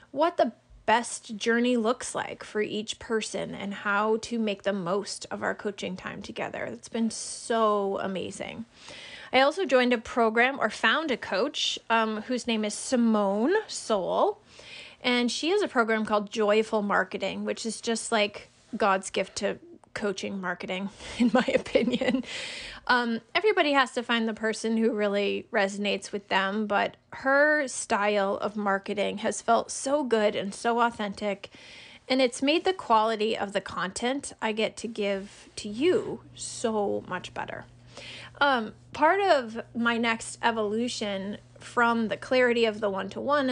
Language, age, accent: English, 20-39, American